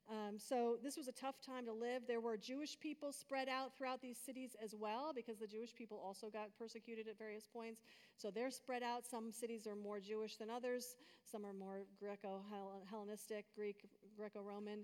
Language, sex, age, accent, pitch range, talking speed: English, female, 40-59, American, 205-245 Hz, 190 wpm